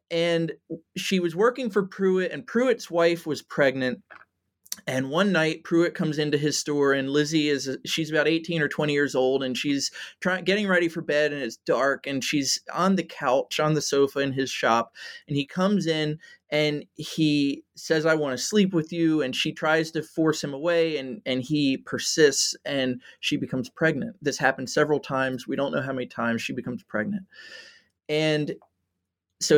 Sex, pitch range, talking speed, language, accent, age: male, 140-175 Hz, 190 wpm, English, American, 30-49